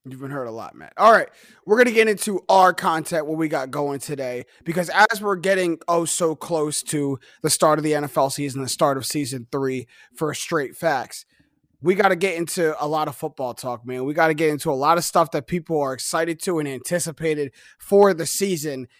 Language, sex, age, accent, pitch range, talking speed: English, male, 30-49, American, 150-195 Hz, 225 wpm